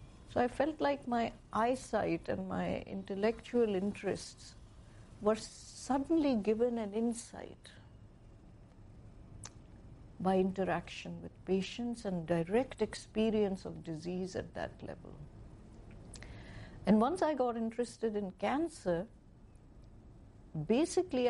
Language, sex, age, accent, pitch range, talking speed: English, female, 60-79, Indian, 160-220 Hz, 100 wpm